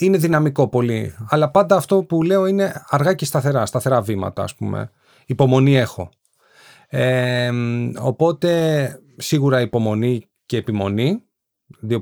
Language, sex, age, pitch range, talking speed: Greek, male, 30-49, 120-160 Hz, 120 wpm